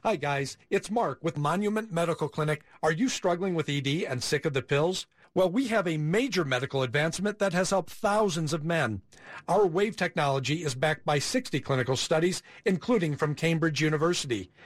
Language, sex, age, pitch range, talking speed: English, male, 50-69, 140-185 Hz, 180 wpm